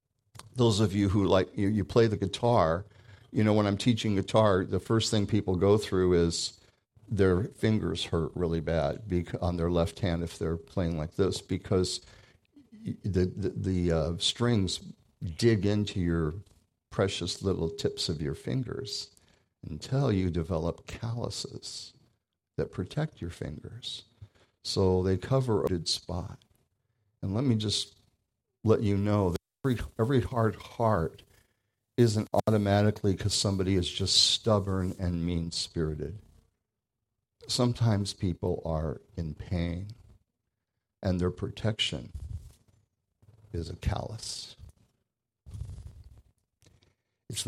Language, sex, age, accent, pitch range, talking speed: English, male, 50-69, American, 95-115 Hz, 125 wpm